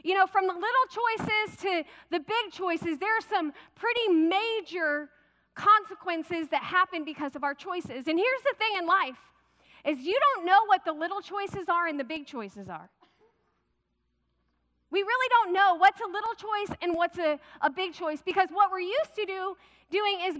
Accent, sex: American, female